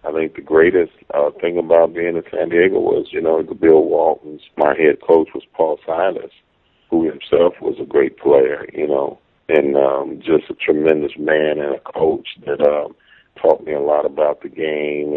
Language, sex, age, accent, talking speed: English, male, 40-59, American, 195 wpm